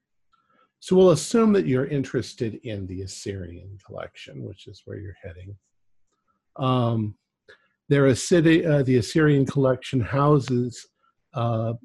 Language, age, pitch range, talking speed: English, 50-69, 110-135 Hz, 115 wpm